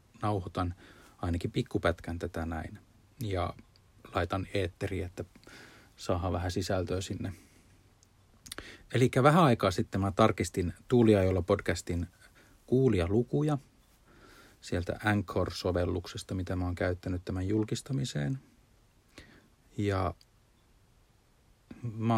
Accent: native